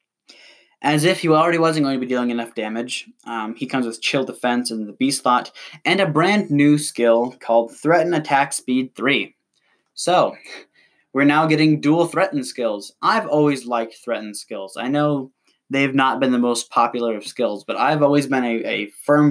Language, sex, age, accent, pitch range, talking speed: English, male, 10-29, American, 120-150 Hz, 185 wpm